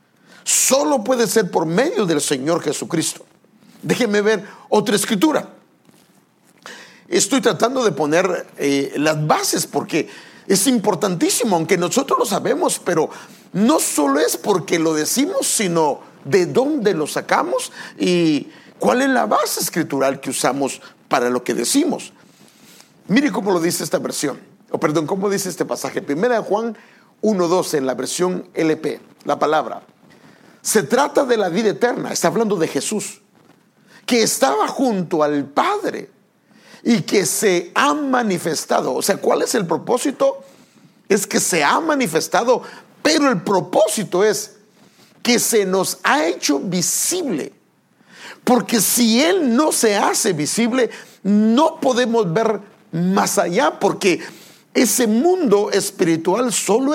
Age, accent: 50-69, Mexican